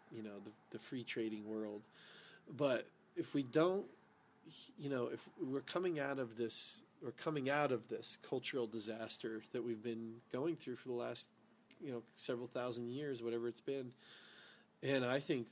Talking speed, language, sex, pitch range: 175 wpm, English, male, 115-150 Hz